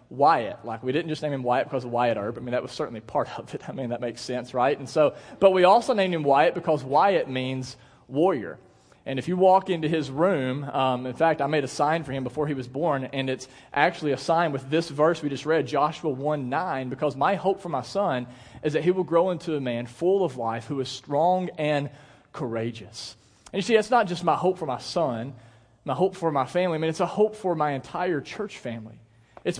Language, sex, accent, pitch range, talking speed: English, male, American, 130-195 Hz, 245 wpm